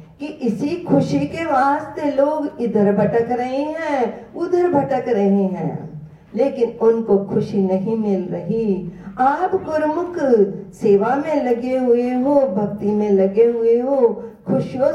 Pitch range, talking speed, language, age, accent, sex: 190-245 Hz, 135 wpm, Hindi, 50-69, native, female